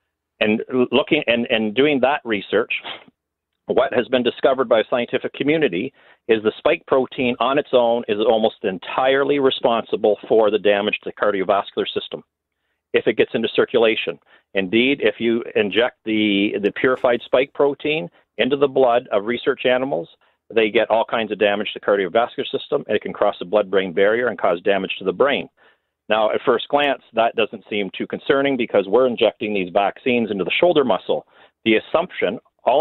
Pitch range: 110-150 Hz